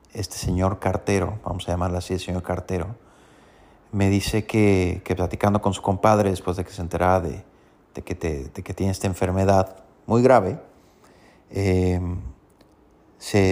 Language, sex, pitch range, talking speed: Spanish, male, 90-105 Hz, 150 wpm